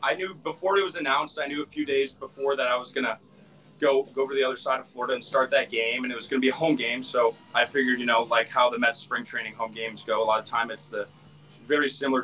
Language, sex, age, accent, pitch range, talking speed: English, male, 30-49, American, 120-150 Hz, 300 wpm